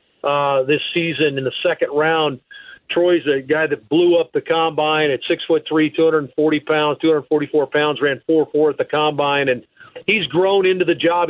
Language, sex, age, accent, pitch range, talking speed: English, male, 50-69, American, 155-195 Hz, 185 wpm